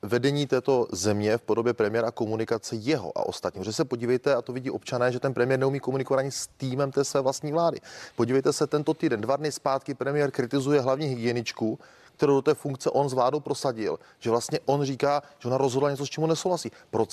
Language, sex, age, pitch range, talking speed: Czech, male, 30-49, 125-150 Hz, 205 wpm